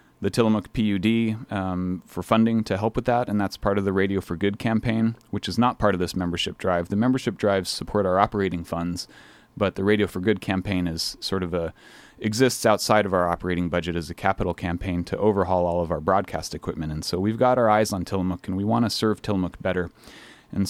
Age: 30-49